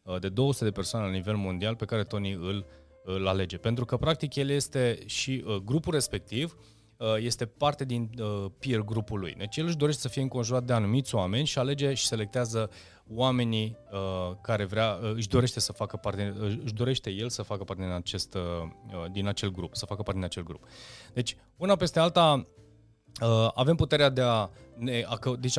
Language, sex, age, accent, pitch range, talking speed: Romanian, male, 30-49, native, 100-125 Hz, 175 wpm